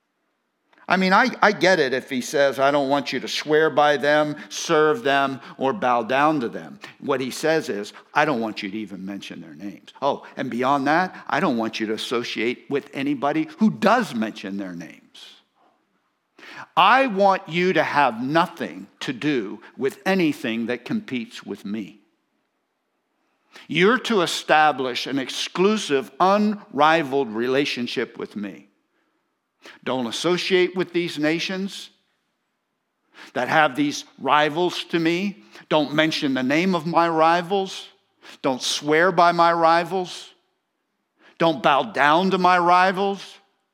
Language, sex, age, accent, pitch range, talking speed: English, male, 60-79, American, 140-195 Hz, 145 wpm